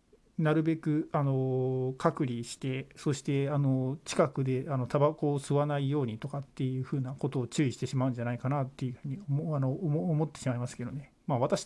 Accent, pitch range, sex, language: native, 125-150 Hz, male, Japanese